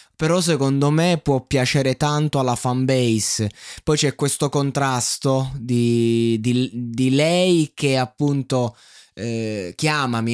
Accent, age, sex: native, 20-39, male